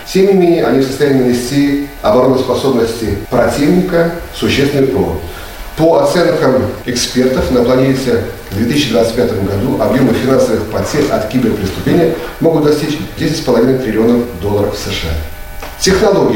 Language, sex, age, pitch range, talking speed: Russian, male, 40-59, 110-145 Hz, 115 wpm